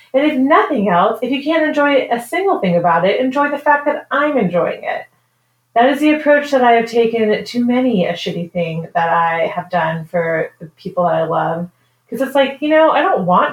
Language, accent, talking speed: English, American, 225 wpm